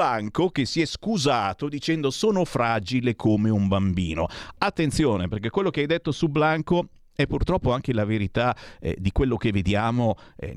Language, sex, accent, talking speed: Italian, male, native, 165 wpm